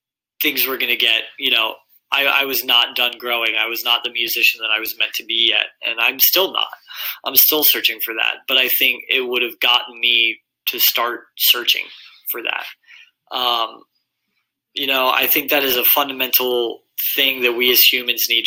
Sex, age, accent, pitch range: male, 20-39, American, 115-135 Hz